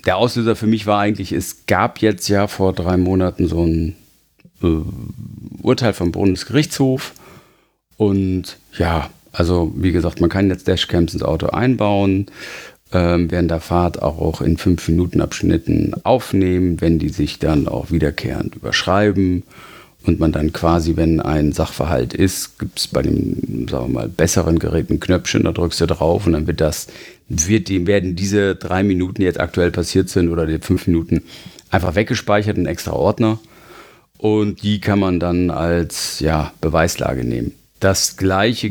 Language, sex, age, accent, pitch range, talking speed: German, male, 40-59, German, 85-105 Hz, 165 wpm